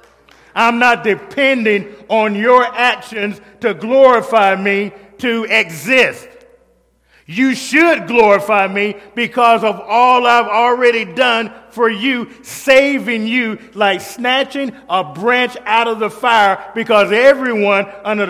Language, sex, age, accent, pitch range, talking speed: English, male, 40-59, American, 180-230 Hz, 120 wpm